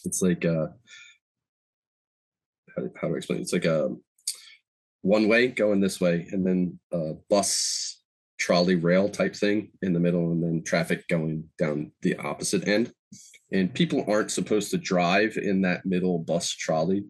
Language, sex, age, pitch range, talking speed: English, male, 20-39, 85-105 Hz, 160 wpm